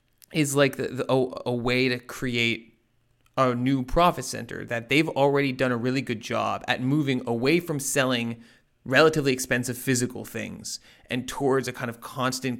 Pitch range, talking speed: 115-135 Hz, 165 wpm